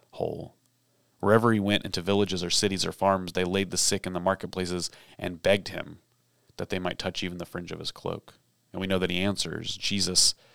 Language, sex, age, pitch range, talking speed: English, male, 30-49, 90-105 Hz, 210 wpm